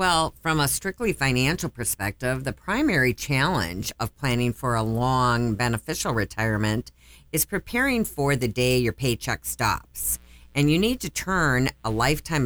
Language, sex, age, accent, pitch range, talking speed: English, female, 50-69, American, 110-140 Hz, 150 wpm